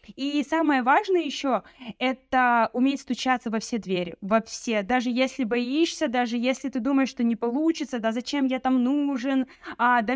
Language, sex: Russian, female